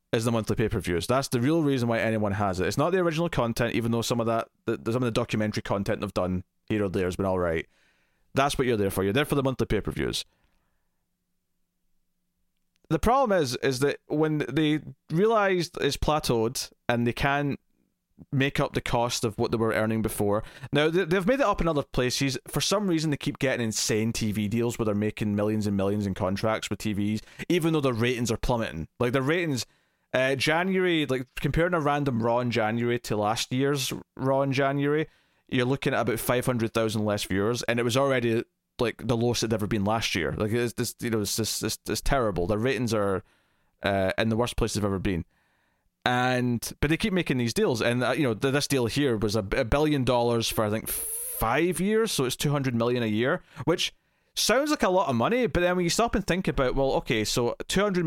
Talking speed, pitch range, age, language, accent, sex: 220 wpm, 110-145 Hz, 20-39, English, British, male